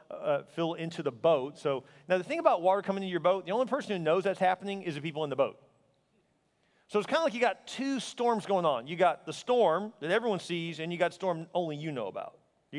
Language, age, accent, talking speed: English, 40-59, American, 265 wpm